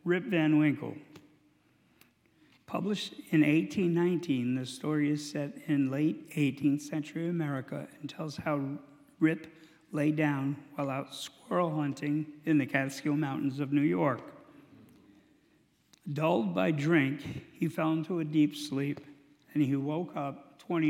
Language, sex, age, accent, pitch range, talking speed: English, male, 60-79, American, 140-165 Hz, 130 wpm